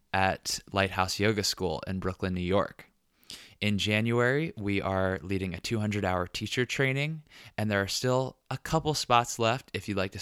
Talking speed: 170 wpm